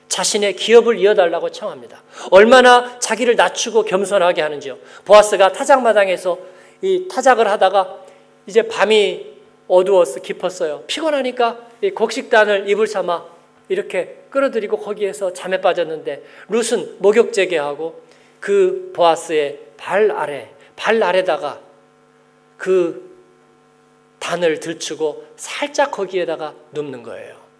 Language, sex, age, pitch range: Korean, male, 40-59, 185-295 Hz